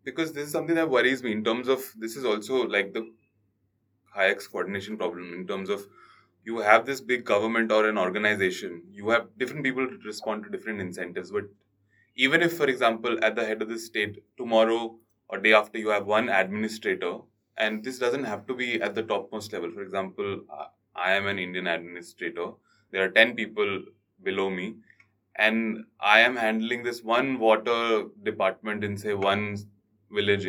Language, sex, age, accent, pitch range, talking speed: English, male, 20-39, Indian, 100-115 Hz, 185 wpm